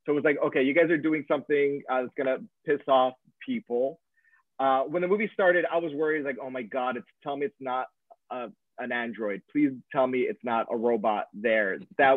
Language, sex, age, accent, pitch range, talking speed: English, male, 30-49, American, 130-170 Hz, 210 wpm